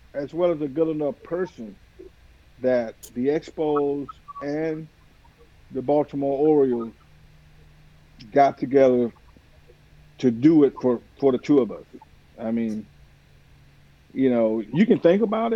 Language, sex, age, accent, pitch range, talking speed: English, male, 50-69, American, 120-150 Hz, 125 wpm